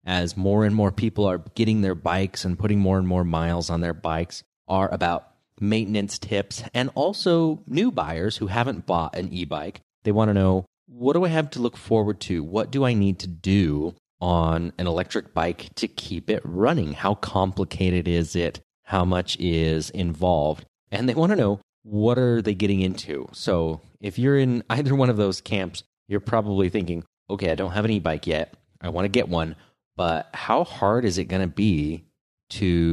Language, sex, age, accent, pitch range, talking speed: English, male, 30-49, American, 85-110 Hz, 195 wpm